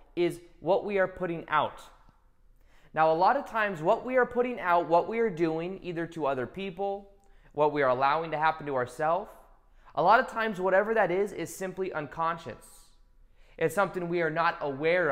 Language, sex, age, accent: English, male, 20-39, American